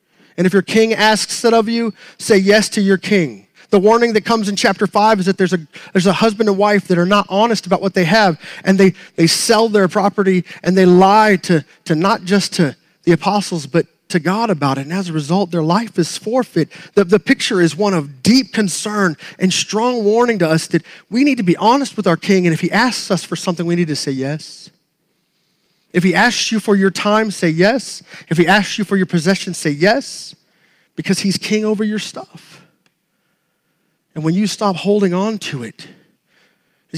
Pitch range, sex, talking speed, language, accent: 175-215 Hz, male, 215 wpm, English, American